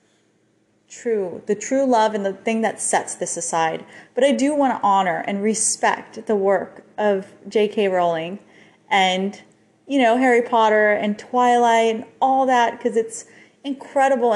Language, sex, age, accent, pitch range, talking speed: English, female, 30-49, American, 170-215 Hz, 155 wpm